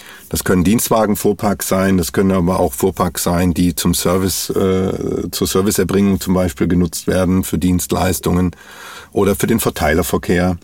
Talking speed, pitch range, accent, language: 150 wpm, 90-100 Hz, German, German